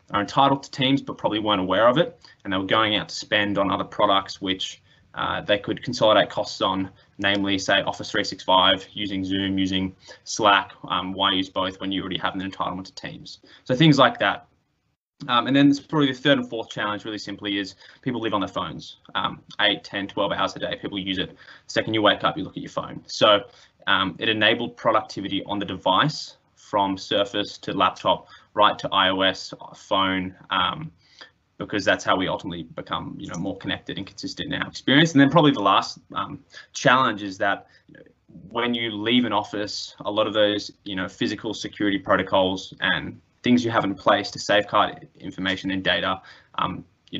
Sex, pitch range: male, 95-115 Hz